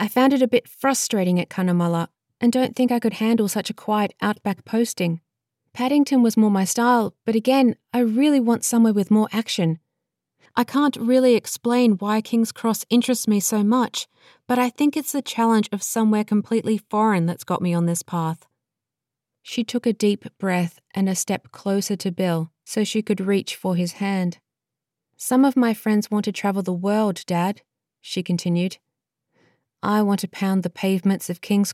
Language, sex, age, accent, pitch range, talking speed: English, female, 30-49, Australian, 170-220 Hz, 185 wpm